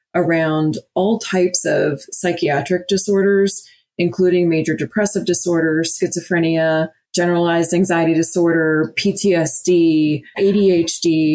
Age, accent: 30-49, American